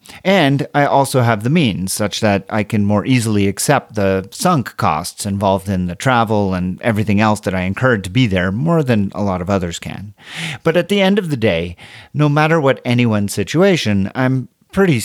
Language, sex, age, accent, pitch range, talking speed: English, male, 40-59, American, 100-125 Hz, 200 wpm